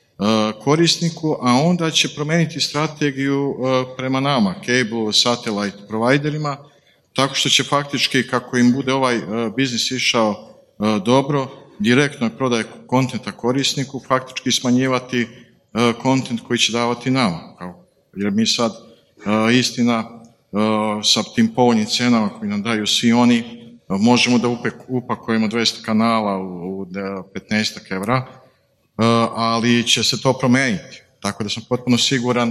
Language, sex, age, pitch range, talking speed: Croatian, male, 50-69, 115-135 Hz, 120 wpm